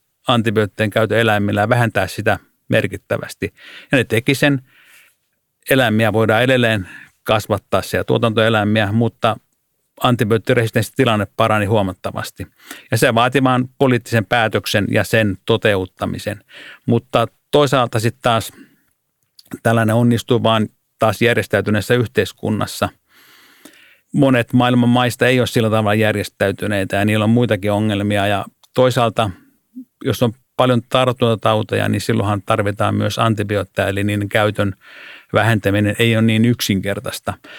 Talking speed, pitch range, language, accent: 115 wpm, 105-120 Hz, Finnish, native